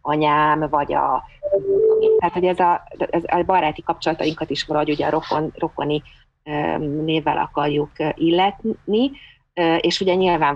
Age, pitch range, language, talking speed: 30-49, 150-165 Hz, Hungarian, 125 wpm